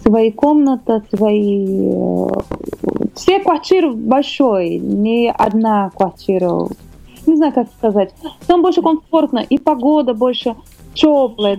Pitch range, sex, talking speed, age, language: 225-300 Hz, female, 100 wpm, 20-39, Russian